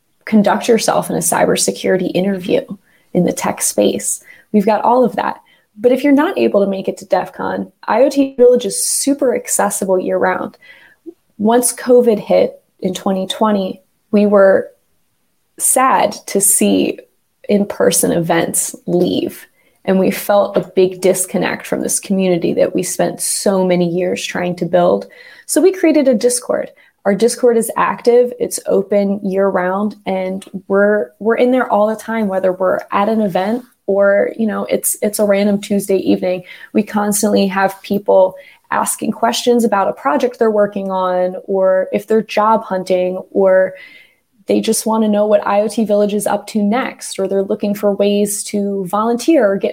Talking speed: 165 wpm